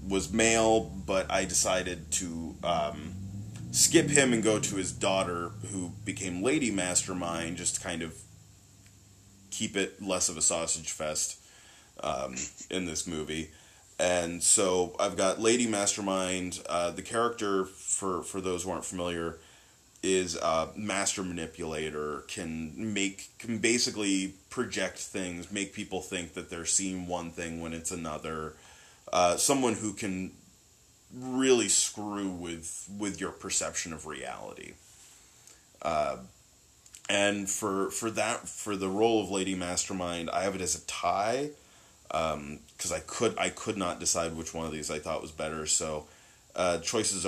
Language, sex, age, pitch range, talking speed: English, male, 30-49, 85-100 Hz, 150 wpm